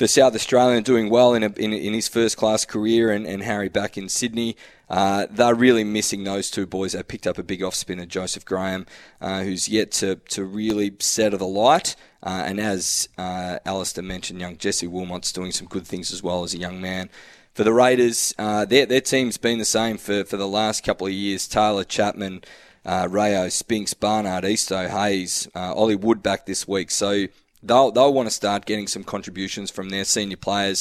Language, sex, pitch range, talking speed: English, male, 95-115 Hz, 205 wpm